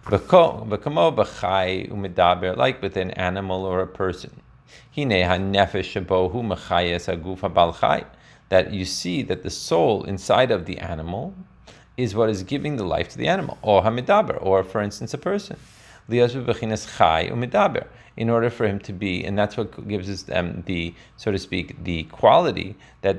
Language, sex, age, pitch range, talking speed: English, male, 40-59, 90-115 Hz, 125 wpm